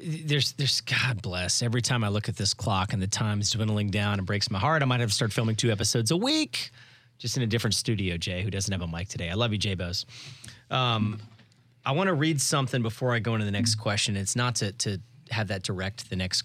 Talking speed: 255 wpm